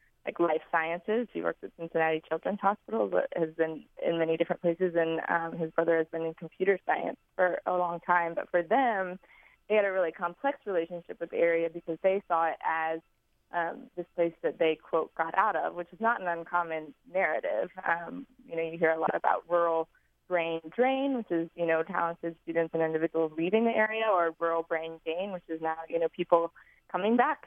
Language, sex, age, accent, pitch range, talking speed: English, female, 20-39, American, 165-180 Hz, 210 wpm